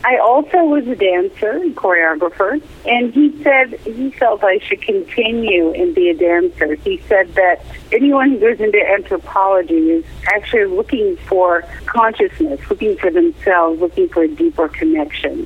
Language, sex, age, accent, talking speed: English, female, 50-69, American, 155 wpm